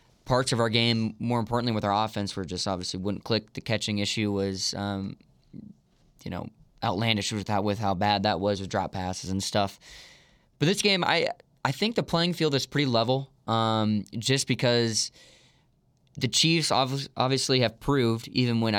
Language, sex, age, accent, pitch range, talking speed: English, male, 20-39, American, 105-120 Hz, 180 wpm